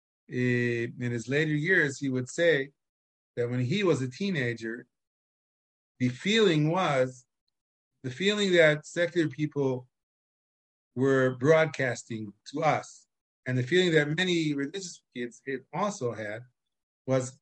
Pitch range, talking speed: 120-145 Hz, 125 wpm